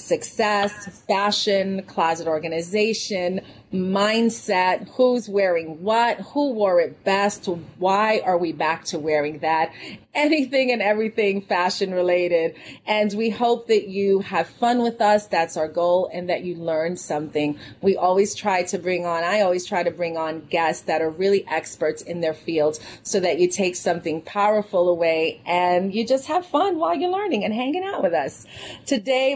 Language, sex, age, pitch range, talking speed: English, female, 30-49, 175-225 Hz, 170 wpm